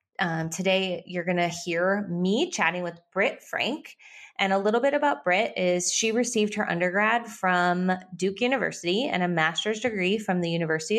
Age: 20-39